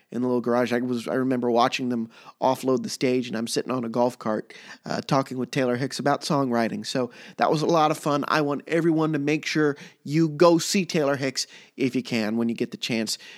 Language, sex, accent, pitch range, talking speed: English, male, American, 125-185 Hz, 240 wpm